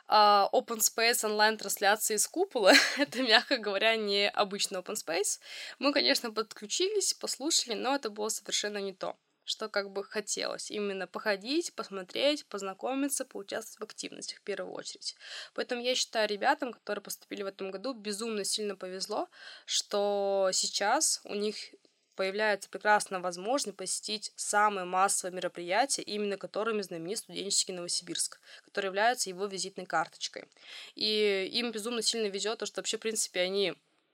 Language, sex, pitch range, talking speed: Russian, female, 195-225 Hz, 140 wpm